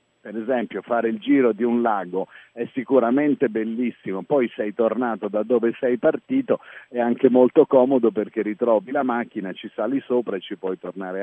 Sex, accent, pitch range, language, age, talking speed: male, native, 115-150 Hz, Italian, 50-69, 175 wpm